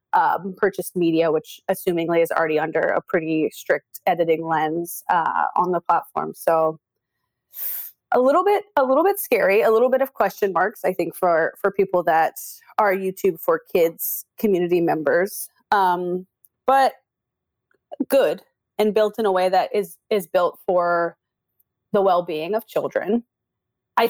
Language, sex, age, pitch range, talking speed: English, female, 20-39, 170-215 Hz, 150 wpm